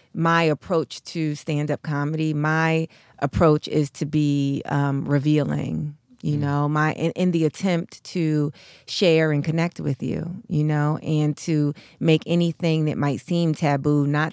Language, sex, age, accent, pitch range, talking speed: English, female, 30-49, American, 145-170 Hz, 155 wpm